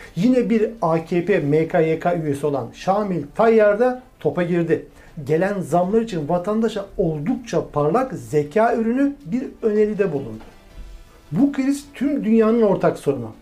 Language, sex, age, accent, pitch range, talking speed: Turkish, male, 60-79, native, 155-225 Hz, 125 wpm